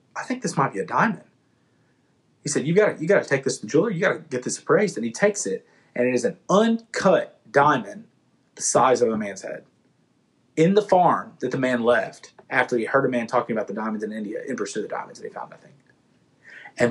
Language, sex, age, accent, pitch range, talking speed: English, male, 30-49, American, 110-160 Hz, 250 wpm